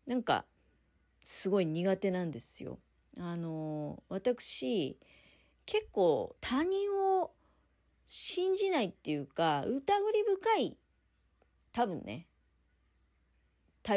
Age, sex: 40-59, female